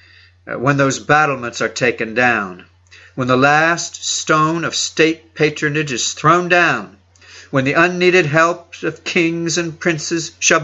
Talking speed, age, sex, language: 140 wpm, 50-69, male, English